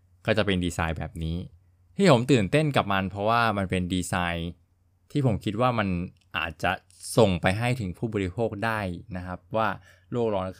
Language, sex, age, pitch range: Thai, male, 20-39, 90-110 Hz